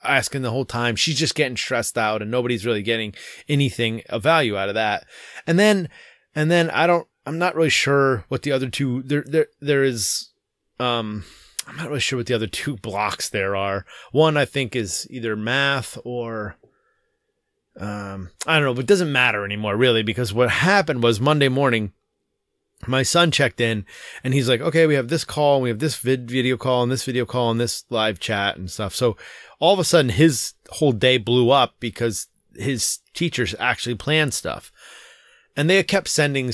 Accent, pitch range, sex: American, 115-150 Hz, male